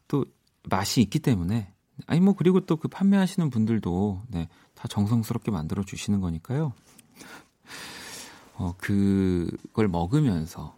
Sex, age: male, 40-59